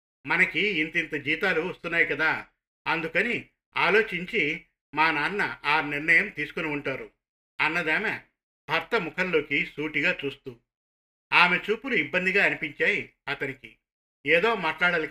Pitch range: 145-195 Hz